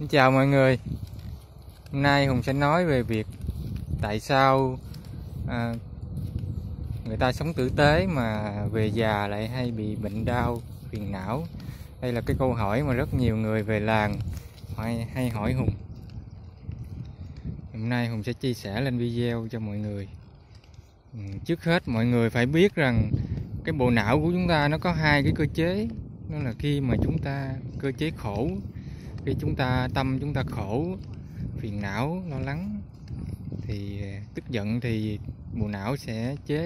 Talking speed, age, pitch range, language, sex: 165 wpm, 20-39, 105-140 Hz, Vietnamese, male